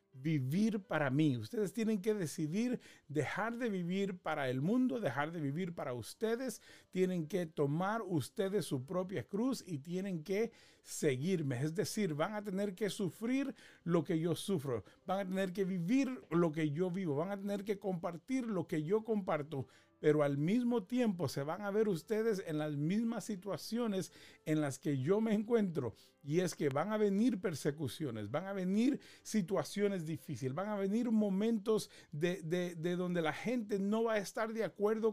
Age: 40-59